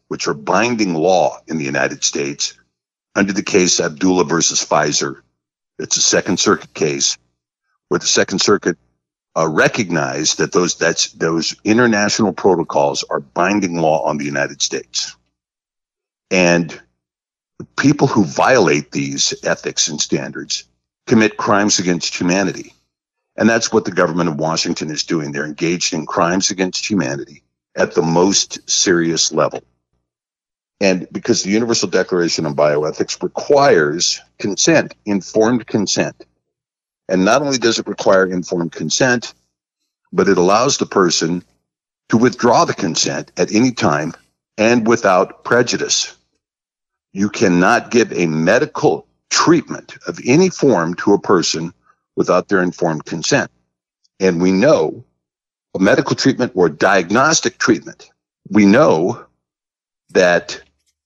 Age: 50-69